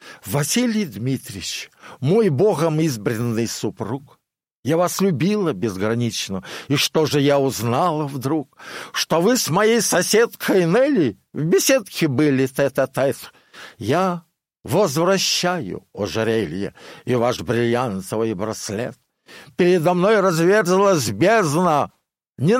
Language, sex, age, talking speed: Russian, male, 60-79, 100 wpm